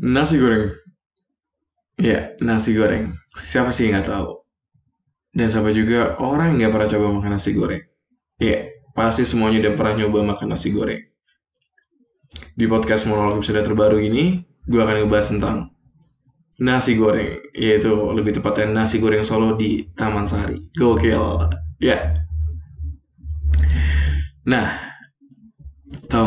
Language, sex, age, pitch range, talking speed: Indonesian, male, 20-39, 105-125 Hz, 130 wpm